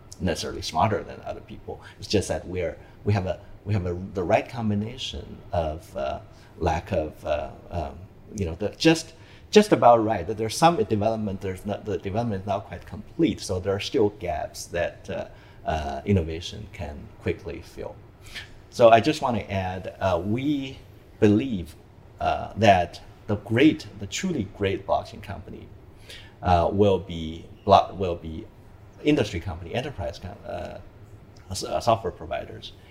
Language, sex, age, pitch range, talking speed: English, male, 50-69, 95-110 Hz, 155 wpm